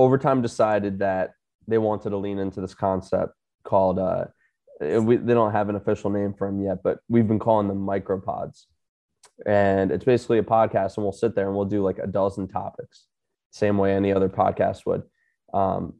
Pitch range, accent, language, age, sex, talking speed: 100-110 Hz, American, English, 20-39, male, 190 wpm